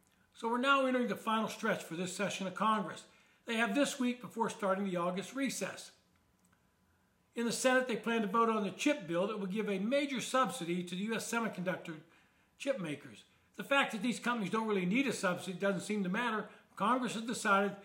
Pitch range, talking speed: 195-230 Hz, 205 wpm